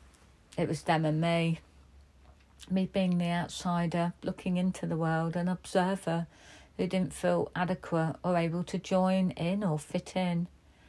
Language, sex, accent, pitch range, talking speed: English, female, British, 150-180 Hz, 150 wpm